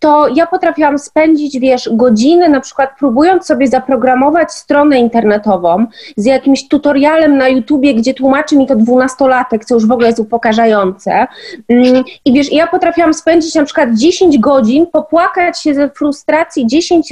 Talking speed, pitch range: 150 wpm, 260-335 Hz